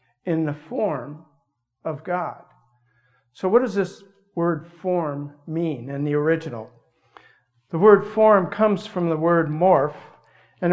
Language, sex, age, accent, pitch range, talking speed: English, male, 60-79, American, 145-180 Hz, 135 wpm